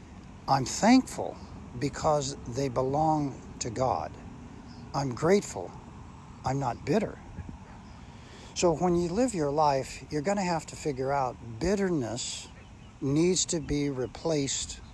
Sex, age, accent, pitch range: male, 60-79, American, 120-155 Hz